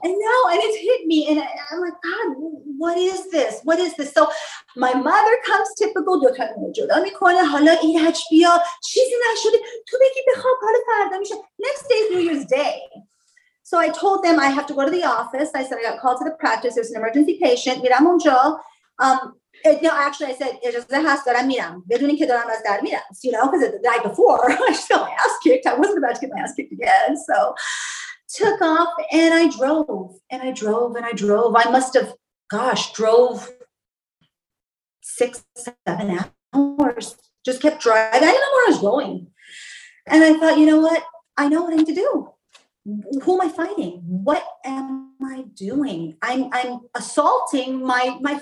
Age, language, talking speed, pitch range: 30-49, English, 170 wpm, 255-360 Hz